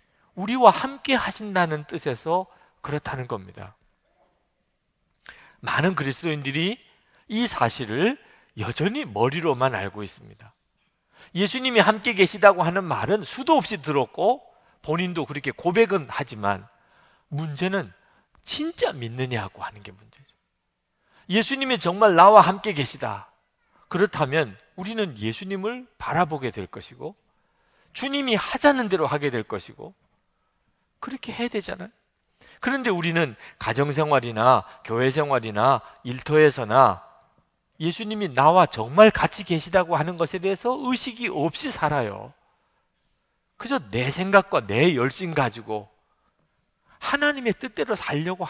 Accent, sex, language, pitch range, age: native, male, Korean, 130-210 Hz, 40-59